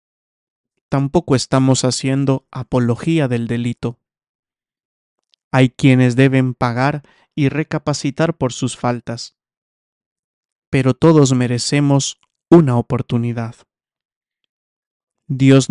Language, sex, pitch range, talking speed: English, male, 125-145 Hz, 80 wpm